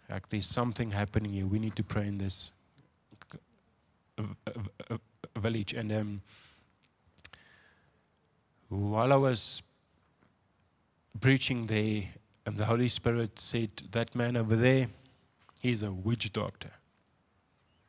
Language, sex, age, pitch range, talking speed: English, male, 30-49, 105-120 Hz, 105 wpm